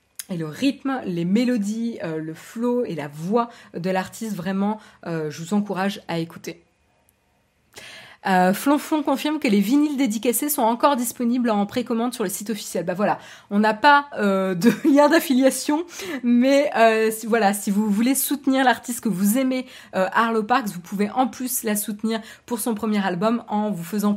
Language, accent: French, French